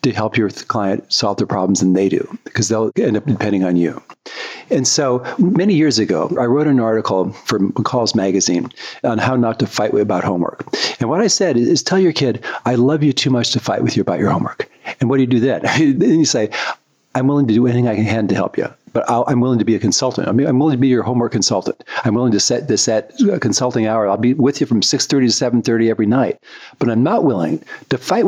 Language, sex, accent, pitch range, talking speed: English, male, American, 110-145 Hz, 245 wpm